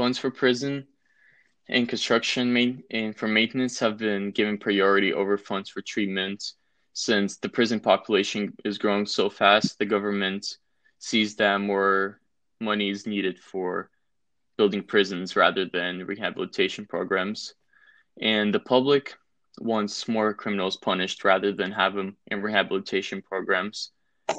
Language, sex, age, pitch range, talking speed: English, male, 20-39, 100-115 Hz, 130 wpm